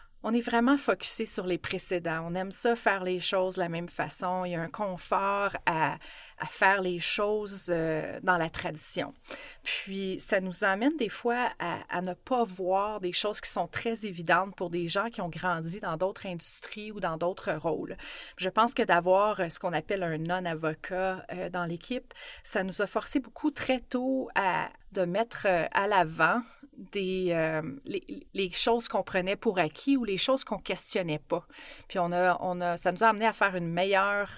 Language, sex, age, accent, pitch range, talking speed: French, female, 30-49, Canadian, 175-230 Hz, 200 wpm